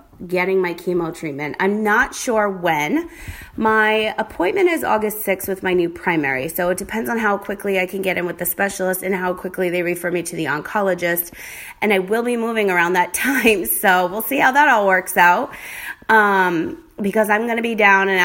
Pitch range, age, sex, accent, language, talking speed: 180-220 Hz, 30-49, female, American, English, 205 wpm